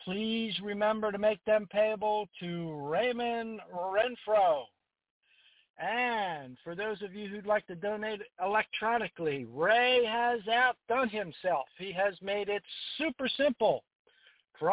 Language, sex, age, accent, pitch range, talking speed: English, male, 60-79, American, 180-230 Hz, 120 wpm